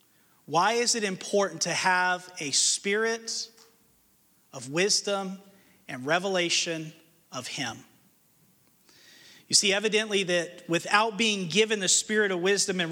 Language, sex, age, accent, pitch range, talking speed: English, male, 40-59, American, 180-230 Hz, 120 wpm